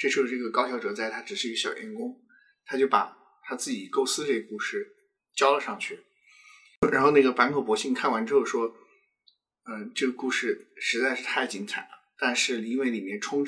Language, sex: Chinese, male